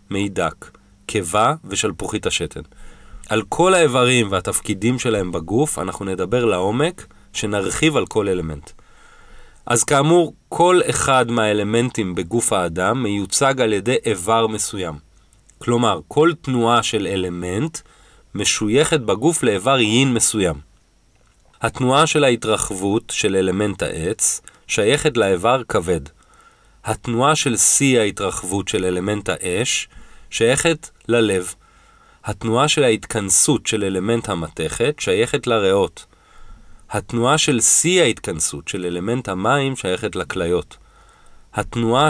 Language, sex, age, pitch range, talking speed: Hebrew, male, 30-49, 95-130 Hz, 105 wpm